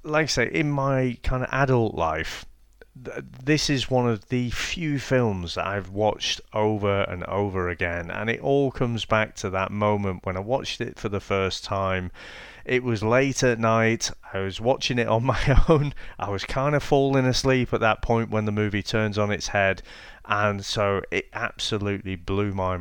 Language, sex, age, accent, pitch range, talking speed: English, male, 30-49, British, 95-130 Hz, 190 wpm